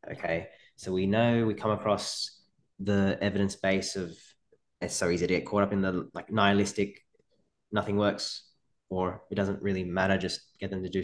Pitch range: 90-100 Hz